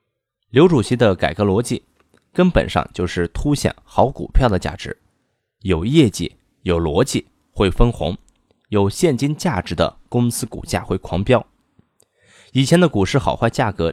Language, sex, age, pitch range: Chinese, male, 20-39, 90-145 Hz